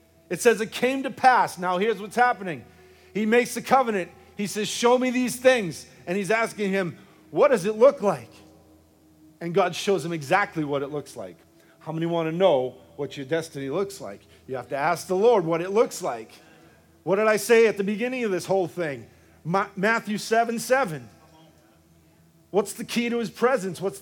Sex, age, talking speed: male, 40-59, 195 wpm